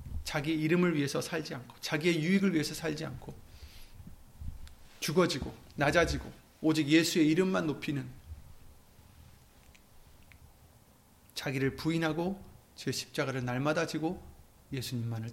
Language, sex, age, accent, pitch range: Korean, male, 30-49, native, 100-160 Hz